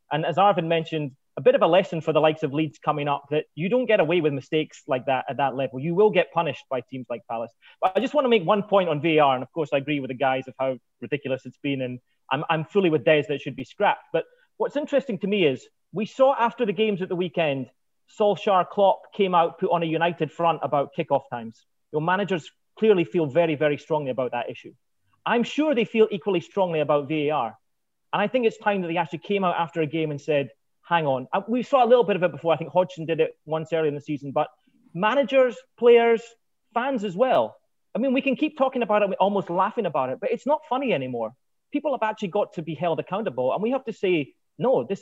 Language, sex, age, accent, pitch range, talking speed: English, male, 30-49, British, 145-205 Hz, 250 wpm